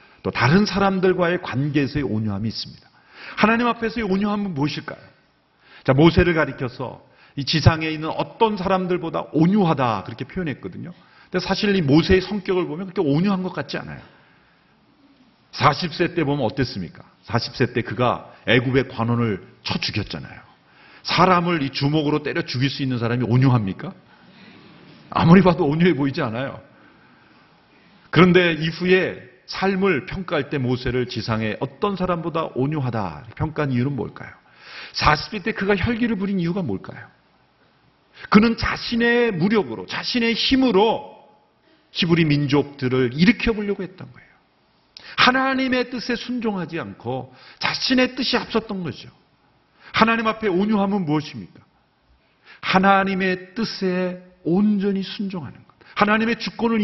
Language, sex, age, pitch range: Korean, male, 40-59, 135-200 Hz